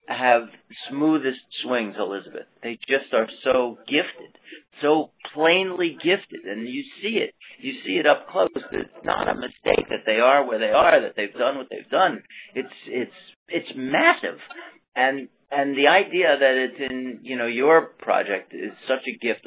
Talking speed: 175 wpm